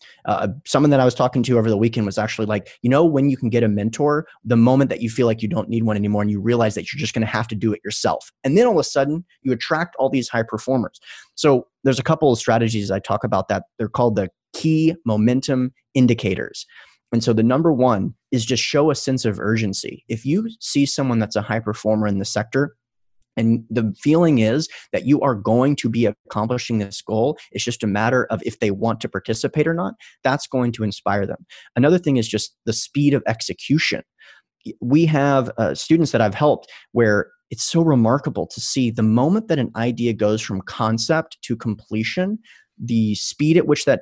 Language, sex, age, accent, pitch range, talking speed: English, male, 30-49, American, 110-140 Hz, 220 wpm